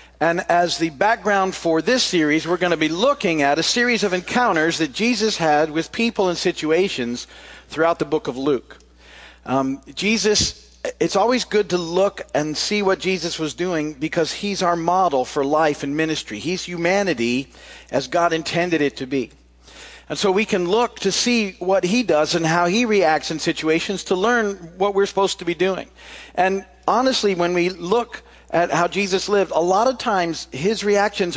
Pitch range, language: 140-190 Hz, English